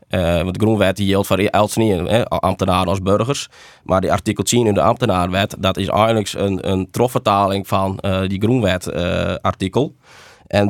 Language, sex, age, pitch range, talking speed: Dutch, male, 20-39, 95-110 Hz, 185 wpm